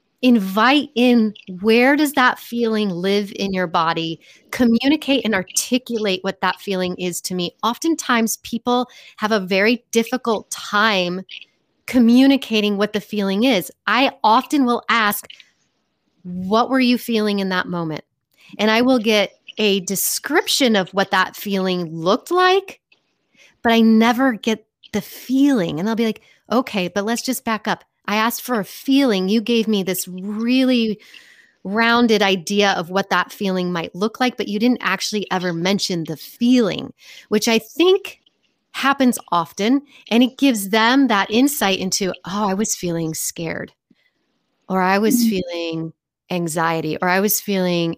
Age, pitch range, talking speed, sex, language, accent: 30-49, 185-240 Hz, 155 wpm, female, English, American